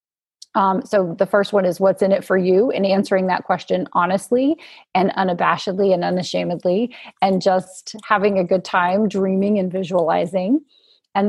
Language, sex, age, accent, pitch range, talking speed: English, female, 30-49, American, 180-215 Hz, 155 wpm